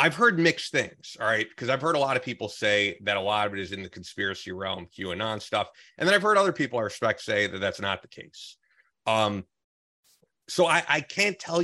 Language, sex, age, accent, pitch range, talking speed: English, male, 30-49, American, 100-130 Hz, 235 wpm